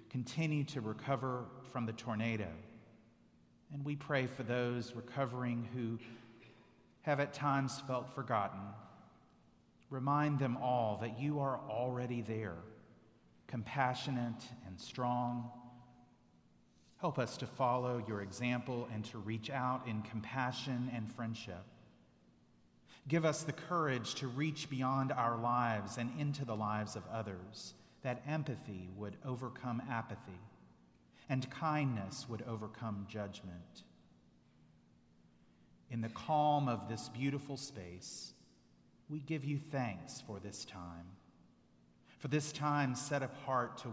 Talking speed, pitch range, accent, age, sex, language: 120 wpm, 100-130 Hz, American, 40-59, male, English